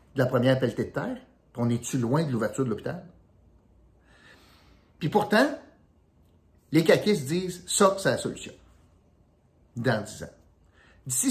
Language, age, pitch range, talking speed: French, 50-69, 105-155 Hz, 145 wpm